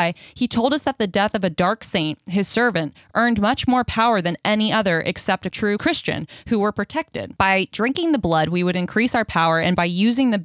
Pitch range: 175-230 Hz